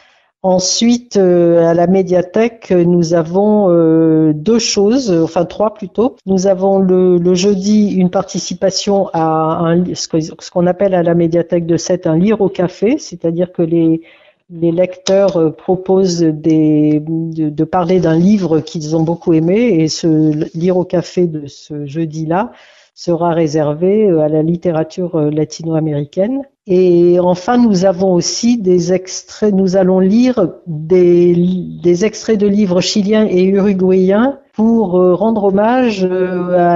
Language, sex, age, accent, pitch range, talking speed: French, female, 60-79, French, 170-195 Hz, 140 wpm